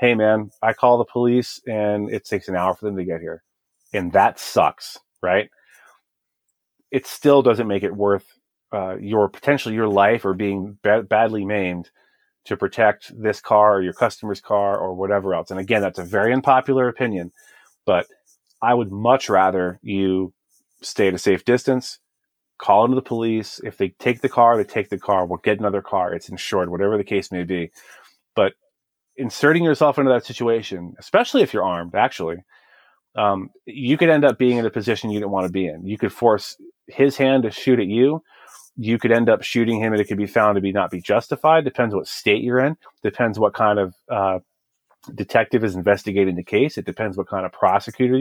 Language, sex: English, male